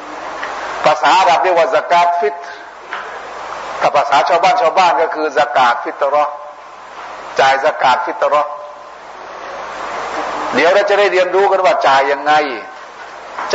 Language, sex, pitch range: Thai, male, 140-175 Hz